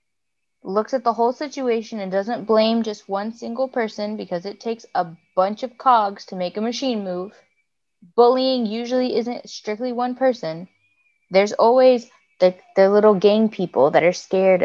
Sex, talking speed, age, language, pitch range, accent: female, 165 wpm, 20-39, English, 200-255 Hz, American